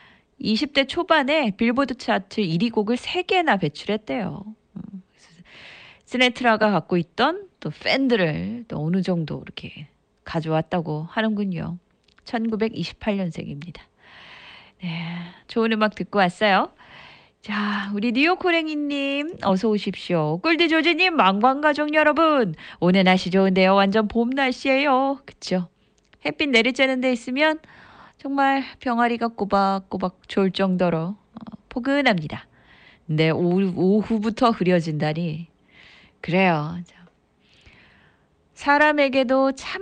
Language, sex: Korean, female